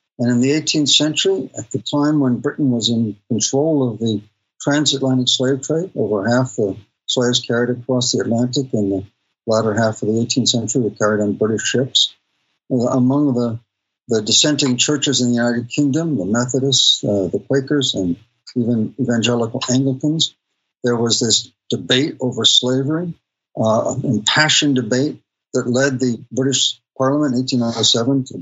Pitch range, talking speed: 115-135 Hz, 155 wpm